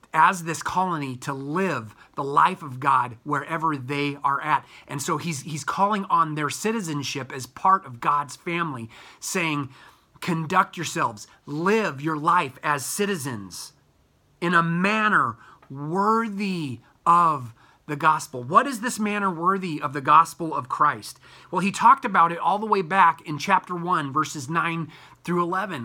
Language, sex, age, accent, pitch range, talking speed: English, male, 30-49, American, 150-200 Hz, 155 wpm